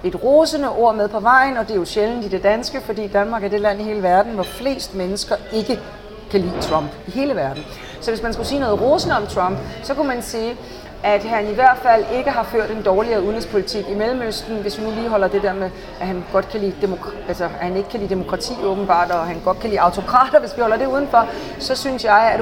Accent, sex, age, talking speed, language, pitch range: native, female, 40-59, 255 wpm, Danish, 190-230 Hz